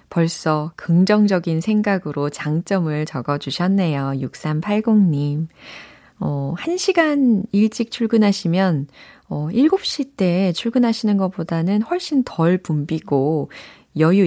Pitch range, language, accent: 155-225 Hz, Korean, native